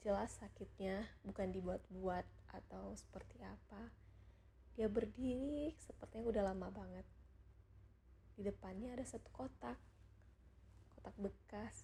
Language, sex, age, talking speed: Indonesian, female, 20-39, 100 wpm